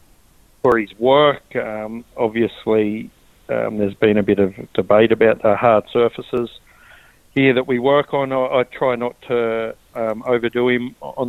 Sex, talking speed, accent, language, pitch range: male, 160 wpm, Australian, English, 105-125 Hz